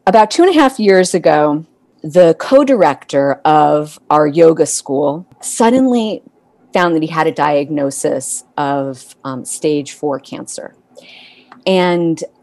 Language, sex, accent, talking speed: English, female, American, 125 wpm